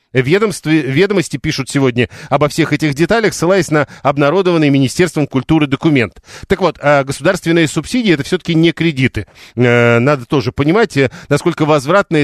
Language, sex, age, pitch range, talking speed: Russian, male, 40-59, 135-170 Hz, 135 wpm